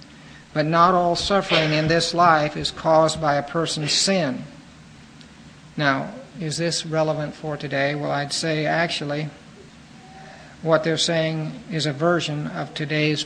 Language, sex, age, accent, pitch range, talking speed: English, male, 50-69, American, 145-165 Hz, 140 wpm